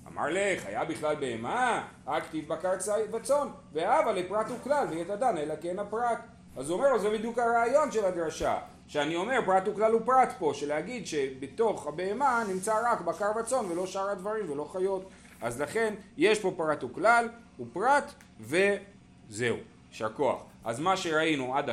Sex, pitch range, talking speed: male, 125-200 Hz, 155 wpm